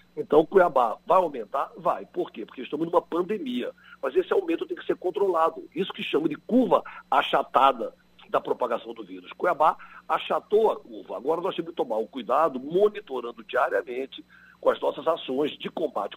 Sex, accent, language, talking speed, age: male, Brazilian, Portuguese, 175 wpm, 60-79